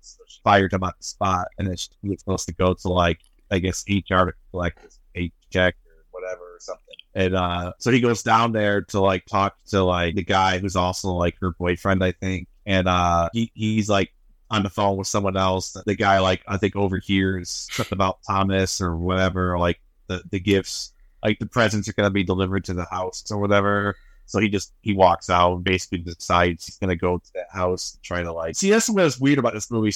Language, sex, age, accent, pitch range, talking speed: English, male, 30-49, American, 95-125 Hz, 230 wpm